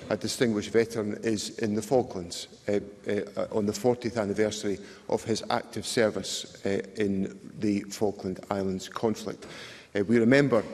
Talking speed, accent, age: 145 wpm, British, 50-69